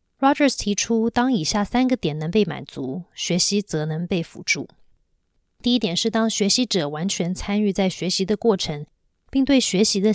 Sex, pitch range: female, 165-220 Hz